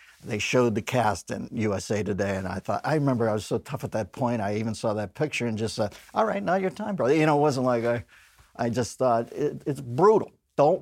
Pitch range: 110-130 Hz